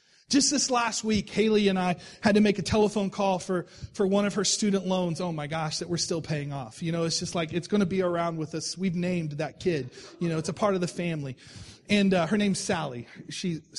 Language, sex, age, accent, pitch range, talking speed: English, male, 30-49, American, 180-255 Hz, 250 wpm